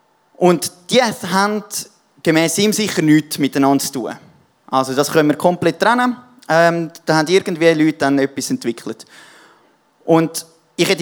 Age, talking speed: 20-39, 145 wpm